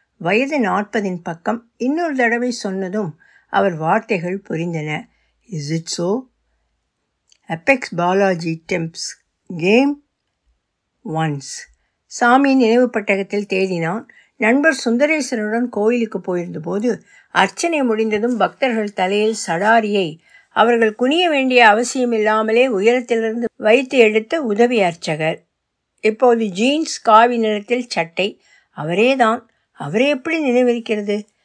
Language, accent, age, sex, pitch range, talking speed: Tamil, native, 60-79, female, 185-245 Hz, 85 wpm